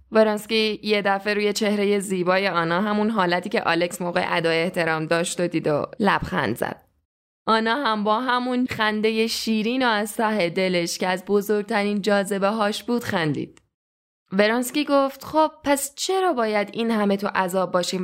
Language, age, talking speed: Persian, 10-29, 160 wpm